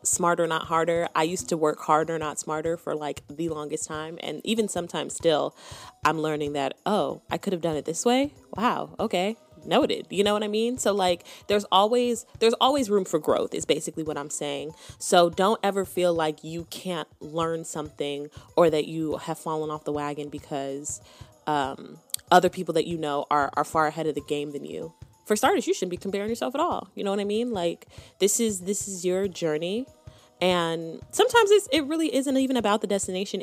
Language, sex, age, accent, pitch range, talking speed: English, female, 20-39, American, 150-195 Hz, 210 wpm